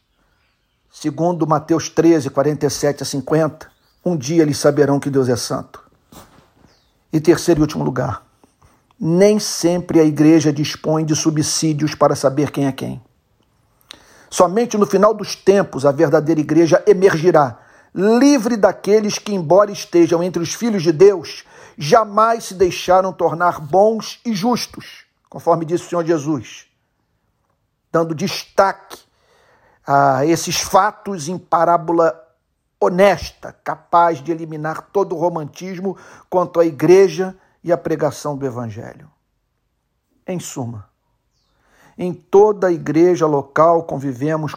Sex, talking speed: male, 125 wpm